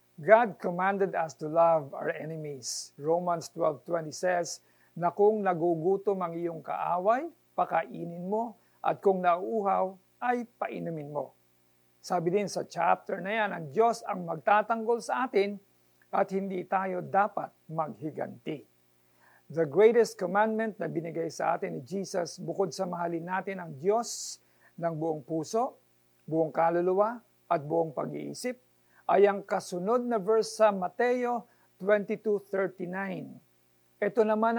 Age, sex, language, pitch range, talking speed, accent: 50-69, male, Filipino, 160-205 Hz, 130 wpm, native